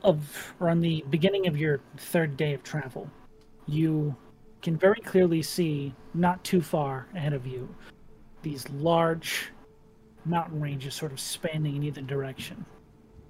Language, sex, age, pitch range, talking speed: English, male, 30-49, 145-170 Hz, 145 wpm